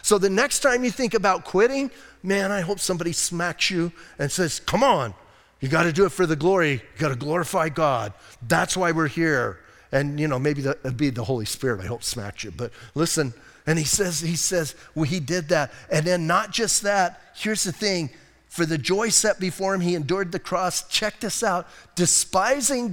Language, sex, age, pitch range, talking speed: English, male, 40-59, 150-210 Hz, 205 wpm